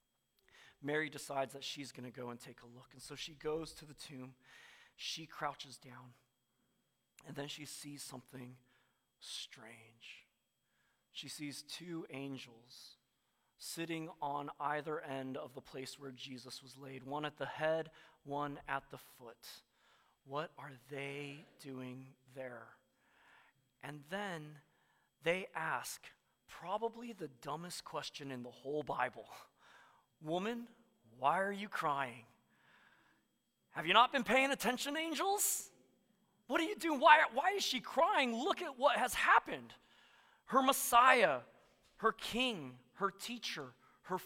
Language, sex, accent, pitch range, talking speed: English, male, American, 130-180 Hz, 135 wpm